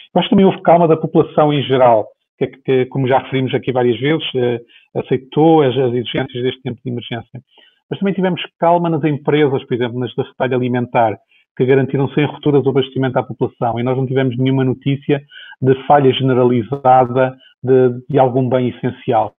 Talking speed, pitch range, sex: 190 wpm, 130-150 Hz, male